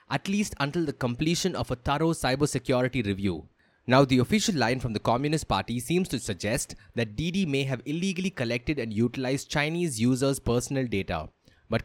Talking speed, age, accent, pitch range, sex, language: 170 wpm, 20-39, Indian, 110-150 Hz, male, English